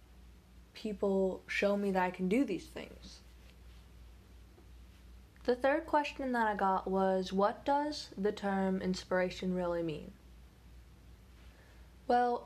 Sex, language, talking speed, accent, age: female, English, 115 wpm, American, 10-29